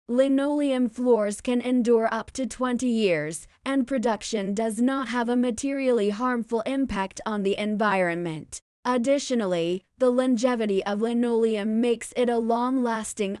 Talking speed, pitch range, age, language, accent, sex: 130 wpm, 205-250 Hz, 20-39, English, American, female